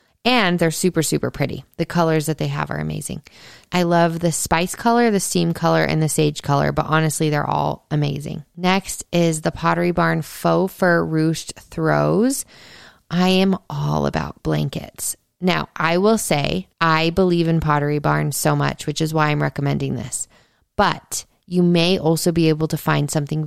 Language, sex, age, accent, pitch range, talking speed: English, female, 20-39, American, 155-180 Hz, 175 wpm